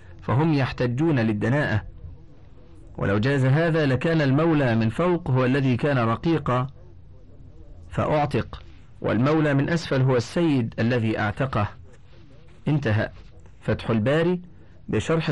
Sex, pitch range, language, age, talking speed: male, 105-145 Hz, Arabic, 40-59, 100 wpm